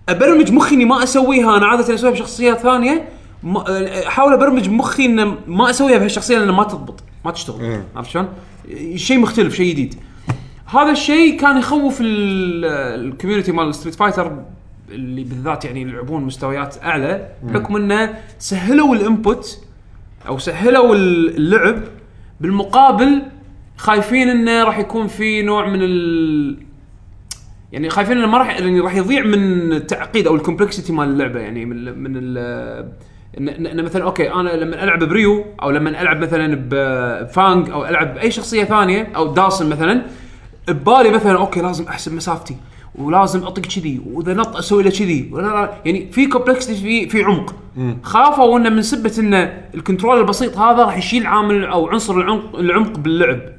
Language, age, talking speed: Arabic, 20-39, 145 wpm